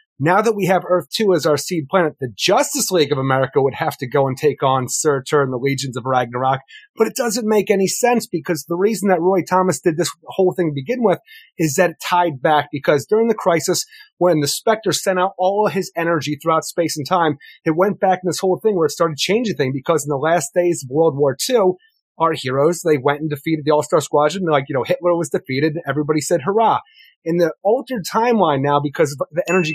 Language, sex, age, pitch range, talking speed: English, male, 30-49, 150-200 Hz, 235 wpm